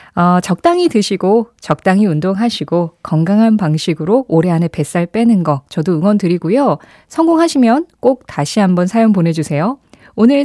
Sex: female